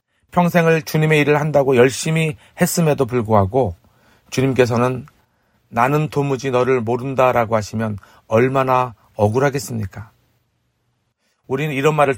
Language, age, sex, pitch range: Korean, 40-59, male, 110-150 Hz